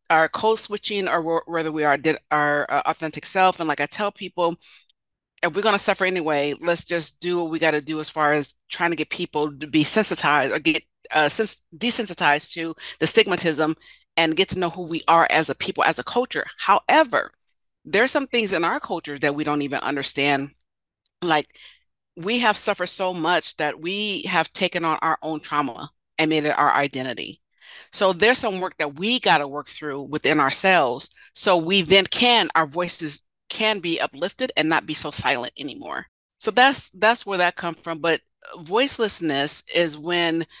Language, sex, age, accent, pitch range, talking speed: English, female, 40-59, American, 155-195 Hz, 190 wpm